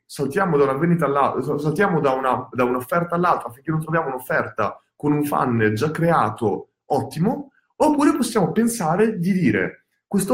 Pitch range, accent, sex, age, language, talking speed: 140-200 Hz, native, male, 30-49, Italian, 145 wpm